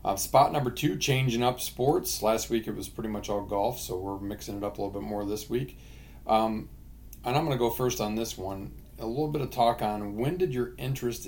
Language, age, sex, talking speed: English, 40-59, male, 245 wpm